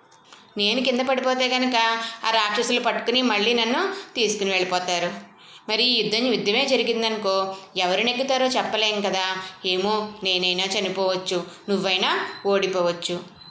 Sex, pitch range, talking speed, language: female, 190-240 Hz, 110 wpm, Telugu